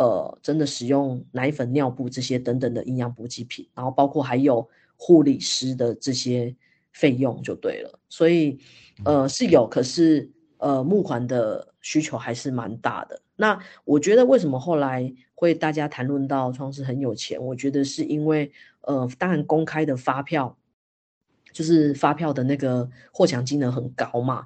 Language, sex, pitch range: Chinese, female, 130-155 Hz